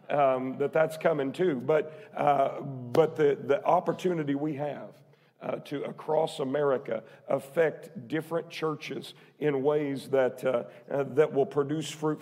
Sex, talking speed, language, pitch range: male, 140 wpm, English, 135-170 Hz